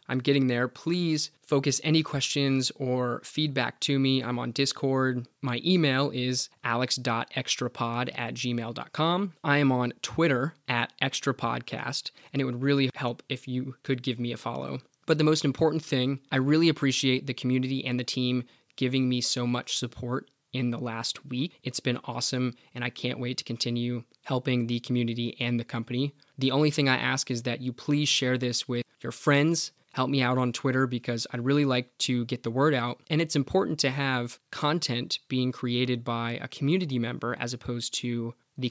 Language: English